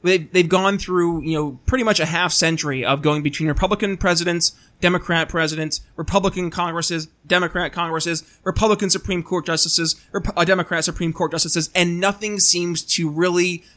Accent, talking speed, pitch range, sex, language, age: American, 155 wpm, 160-210 Hz, male, English, 20-39